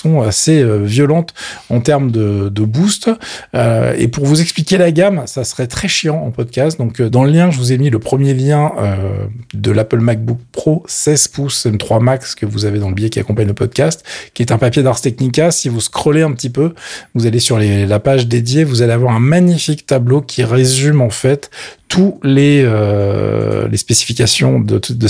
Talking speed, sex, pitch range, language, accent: 205 wpm, male, 115-145 Hz, French, French